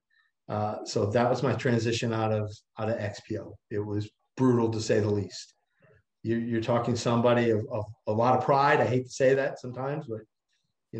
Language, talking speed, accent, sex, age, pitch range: English, 195 wpm, American, male, 50-69, 110-130 Hz